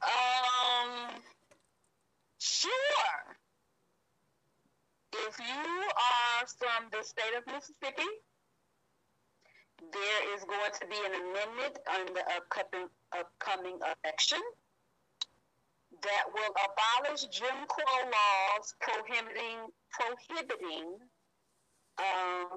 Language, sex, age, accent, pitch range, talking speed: English, female, 50-69, American, 175-230 Hz, 80 wpm